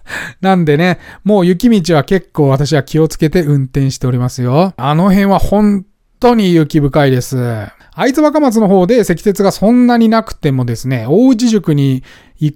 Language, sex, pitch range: Japanese, male, 135-200 Hz